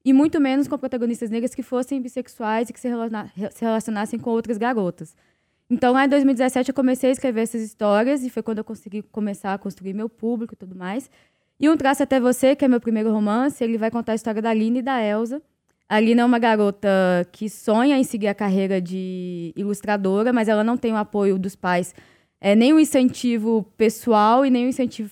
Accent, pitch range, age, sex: Brazilian, 215-255 Hz, 10-29, female